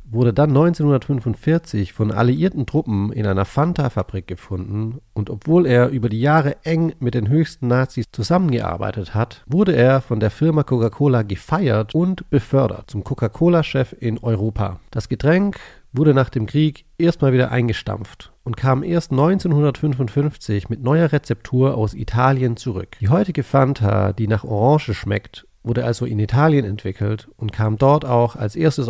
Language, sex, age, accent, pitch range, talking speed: English, male, 40-59, German, 110-145 Hz, 150 wpm